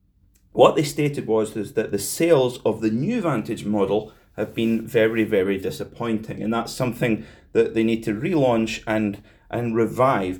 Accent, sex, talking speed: British, male, 160 wpm